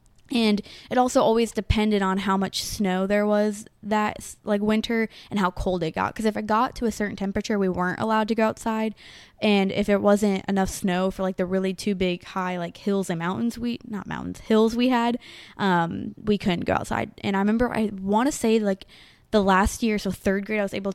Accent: American